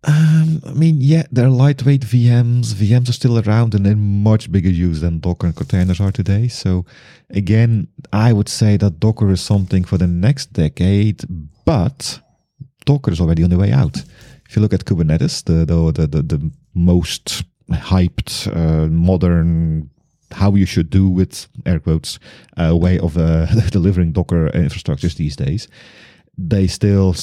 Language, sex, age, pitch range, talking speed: English, male, 30-49, 85-120 Hz, 165 wpm